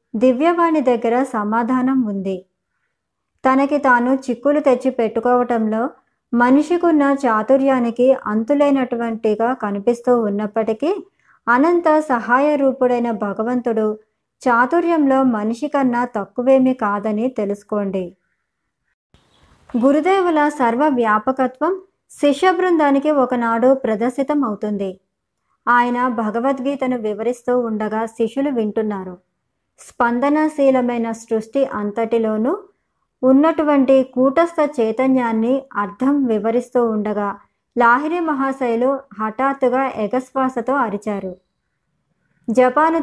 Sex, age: male, 20-39